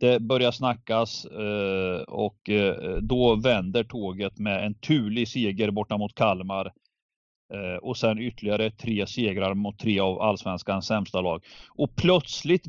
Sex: male